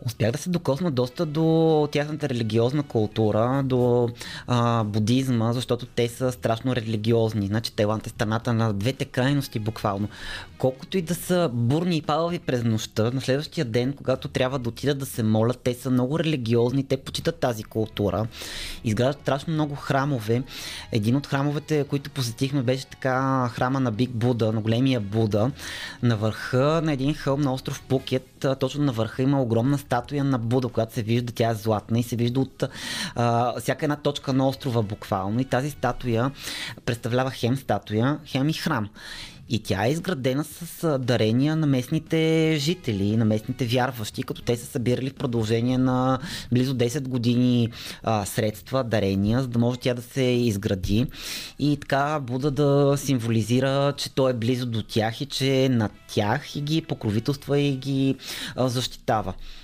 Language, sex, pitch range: Bulgarian, male, 115-140 Hz